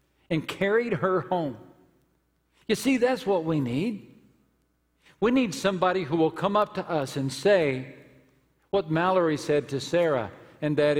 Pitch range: 125-170 Hz